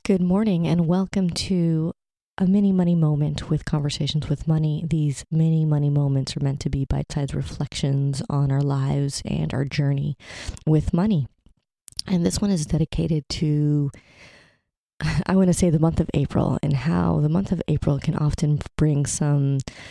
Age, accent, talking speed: 30-49, American, 165 wpm